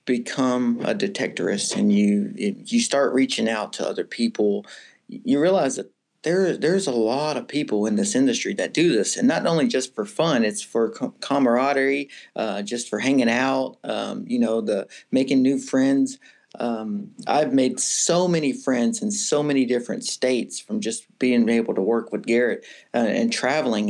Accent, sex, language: American, male, English